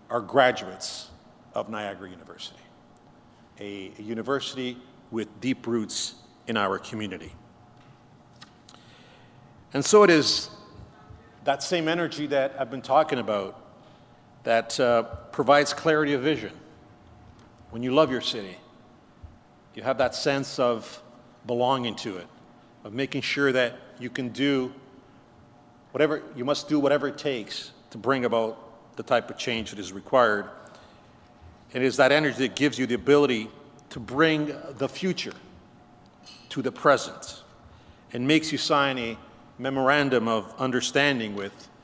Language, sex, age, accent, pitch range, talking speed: English, male, 50-69, American, 120-145 Hz, 135 wpm